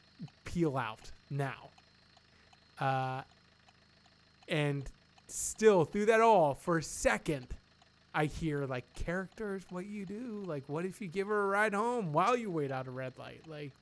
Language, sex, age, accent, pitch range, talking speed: English, male, 20-39, American, 135-165 Hz, 155 wpm